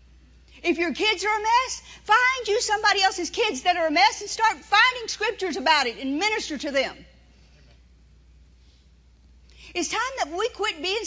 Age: 50-69